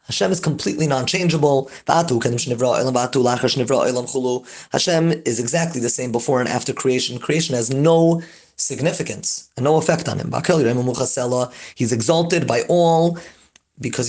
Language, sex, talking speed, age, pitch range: English, male, 115 wpm, 30-49, 120-165 Hz